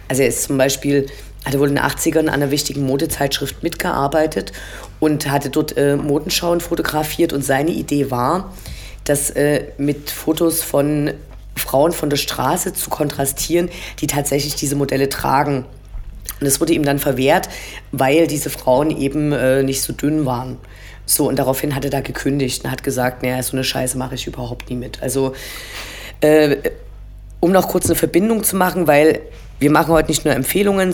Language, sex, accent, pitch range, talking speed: German, female, German, 135-155 Hz, 175 wpm